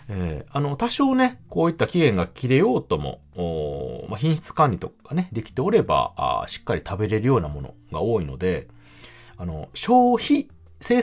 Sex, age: male, 40-59